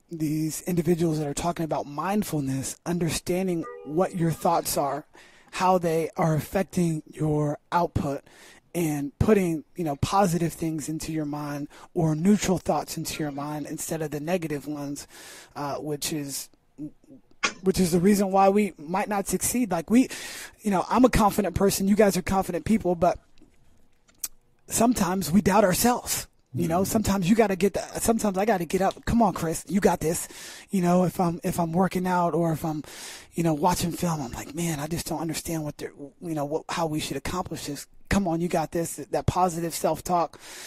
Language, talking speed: English, 190 wpm